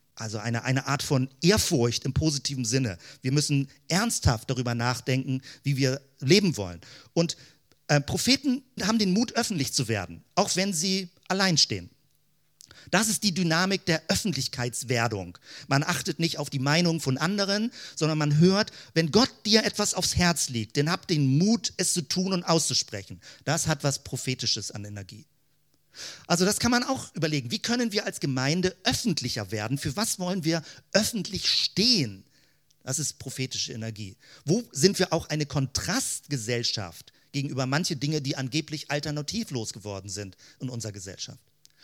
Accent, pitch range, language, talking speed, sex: German, 130-185 Hz, German, 160 wpm, male